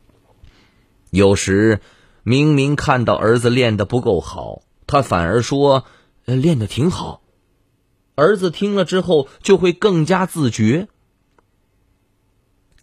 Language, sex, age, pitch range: Chinese, male, 30-49, 95-130 Hz